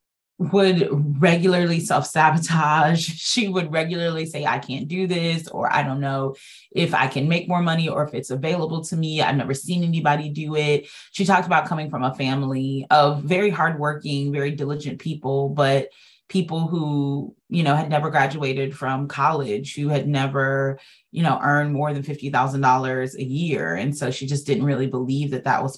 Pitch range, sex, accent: 135-165 Hz, female, American